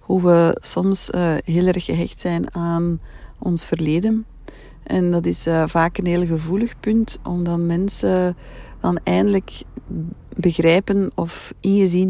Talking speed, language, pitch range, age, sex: 135 wpm, Dutch, 155-185 Hz, 40-59, female